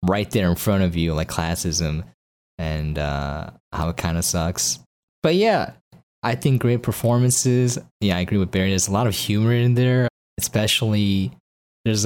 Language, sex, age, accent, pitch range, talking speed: English, male, 20-39, American, 90-135 Hz, 175 wpm